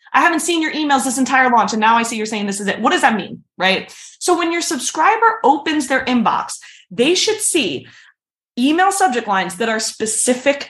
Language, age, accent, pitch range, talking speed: English, 20-39, American, 215-305 Hz, 215 wpm